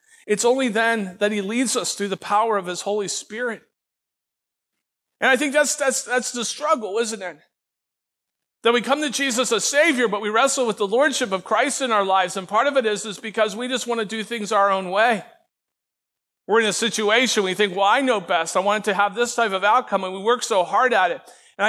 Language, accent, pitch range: English, American, 200-250 Hz